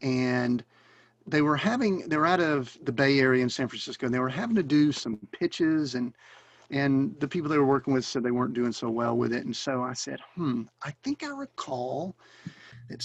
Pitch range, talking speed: 125-150 Hz, 215 wpm